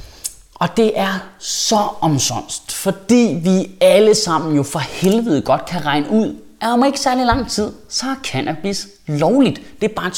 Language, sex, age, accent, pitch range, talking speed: Danish, male, 30-49, native, 150-210 Hz, 175 wpm